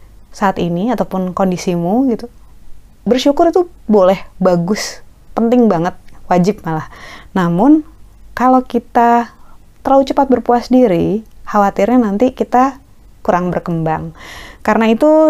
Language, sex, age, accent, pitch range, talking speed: Indonesian, female, 20-39, native, 180-240 Hz, 105 wpm